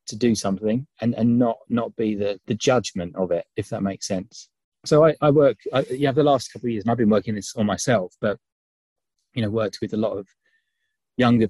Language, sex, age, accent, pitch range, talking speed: English, male, 20-39, British, 100-125 Hz, 240 wpm